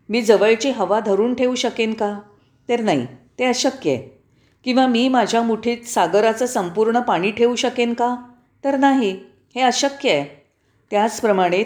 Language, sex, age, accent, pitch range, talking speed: Marathi, female, 40-59, native, 170-230 Hz, 150 wpm